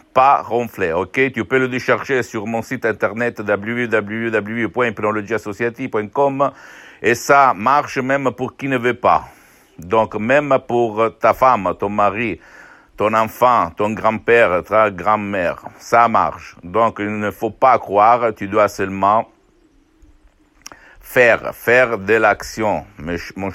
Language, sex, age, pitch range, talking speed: Italian, male, 60-79, 105-130 Hz, 125 wpm